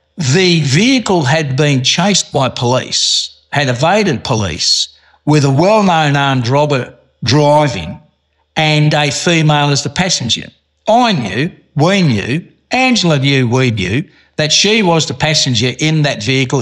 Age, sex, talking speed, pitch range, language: 60-79, male, 135 wpm, 115-150 Hz, English